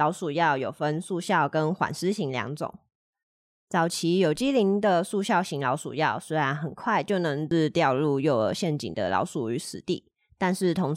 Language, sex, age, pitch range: Chinese, female, 20-39, 150-195 Hz